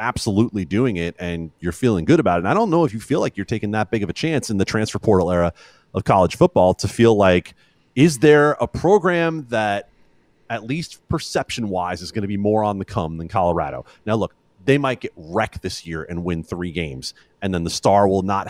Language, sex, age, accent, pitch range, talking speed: English, male, 30-49, American, 100-130 Hz, 230 wpm